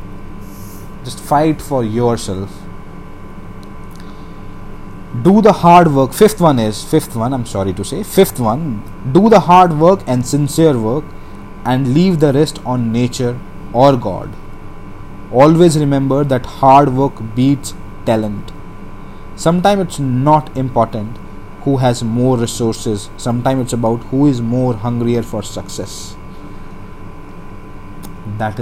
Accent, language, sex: native, Hindi, male